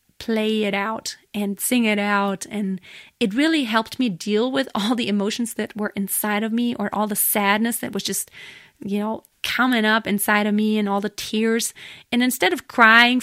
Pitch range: 210-245 Hz